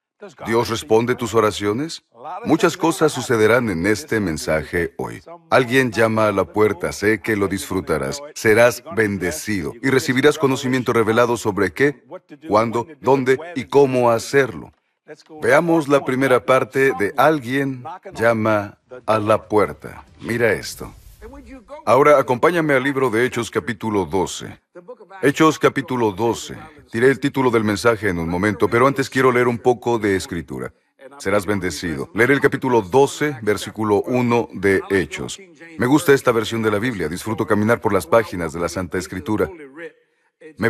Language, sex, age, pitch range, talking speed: Spanish, male, 50-69, 110-145 Hz, 145 wpm